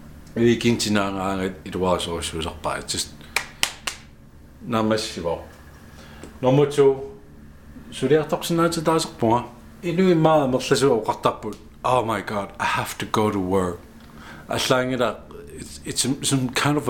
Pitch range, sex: 75-125 Hz, male